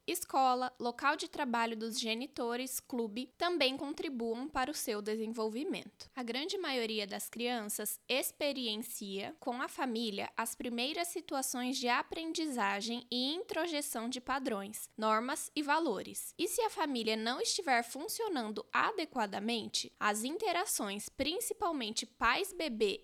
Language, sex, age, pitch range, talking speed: Portuguese, female, 10-29, 235-310 Hz, 120 wpm